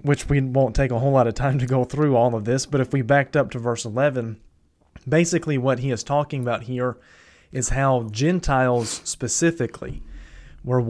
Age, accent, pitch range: 30-49, American, 120-140 Hz